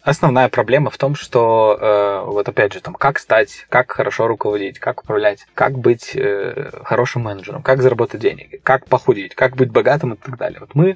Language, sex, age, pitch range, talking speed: Russian, male, 20-39, 115-135 Hz, 190 wpm